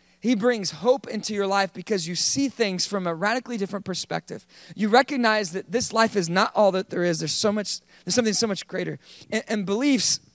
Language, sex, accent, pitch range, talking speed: English, male, American, 185-230 Hz, 215 wpm